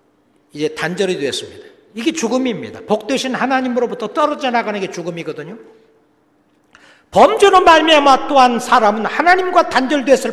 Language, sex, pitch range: Korean, male, 185-270 Hz